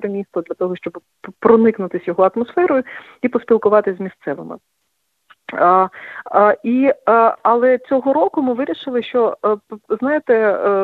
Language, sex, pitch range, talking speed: English, female, 190-230 Hz, 125 wpm